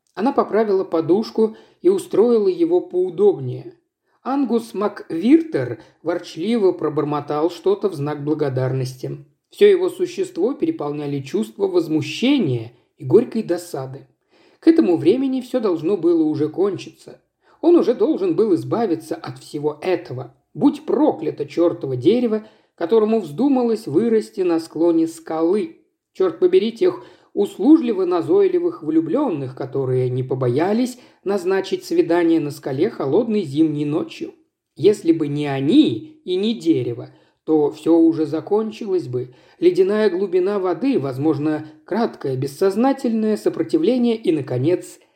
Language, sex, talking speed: Russian, male, 115 wpm